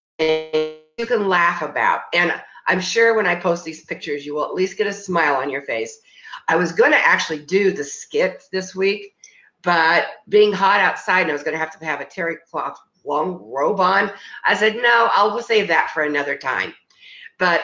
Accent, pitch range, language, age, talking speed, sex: American, 155-240 Hz, English, 50-69, 210 wpm, female